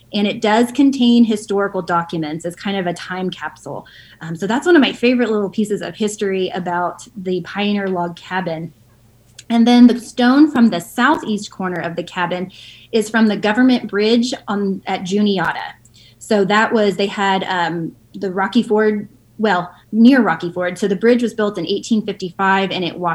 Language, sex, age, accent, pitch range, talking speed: English, female, 20-39, American, 175-235 Hz, 175 wpm